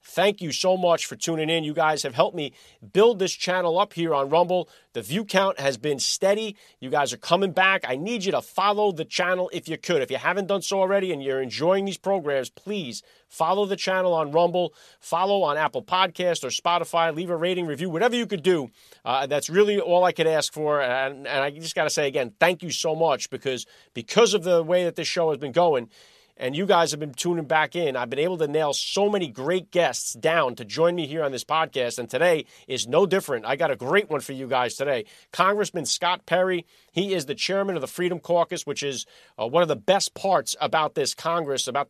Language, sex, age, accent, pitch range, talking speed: English, male, 40-59, American, 145-185 Hz, 235 wpm